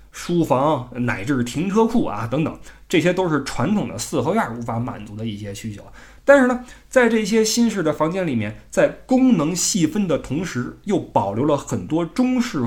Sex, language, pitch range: male, Chinese, 115-180 Hz